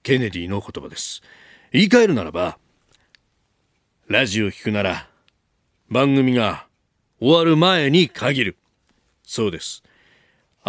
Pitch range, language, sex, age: 100-145 Hz, Japanese, male, 40-59